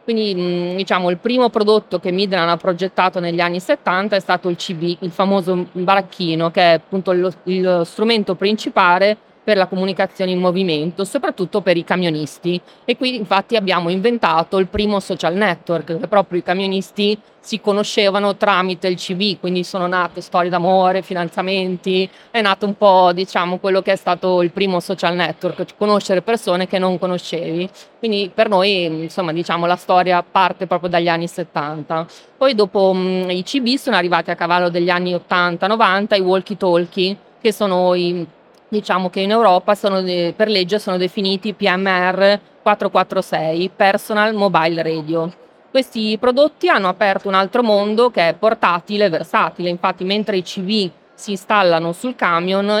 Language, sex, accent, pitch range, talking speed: Italian, female, native, 175-205 Hz, 155 wpm